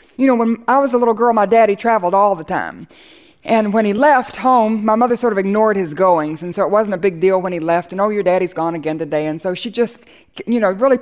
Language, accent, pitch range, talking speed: English, American, 200-265 Hz, 270 wpm